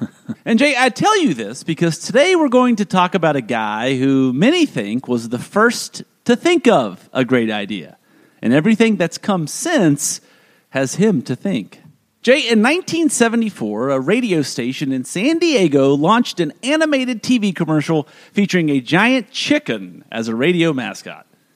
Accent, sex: American, male